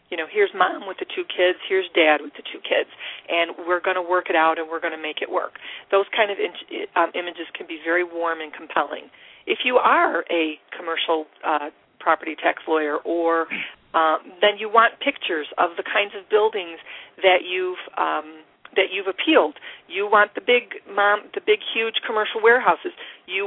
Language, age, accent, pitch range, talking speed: English, 40-59, American, 170-255 Hz, 195 wpm